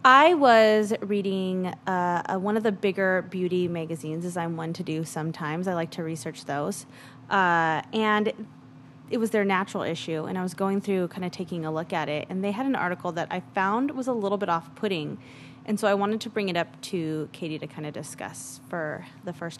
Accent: American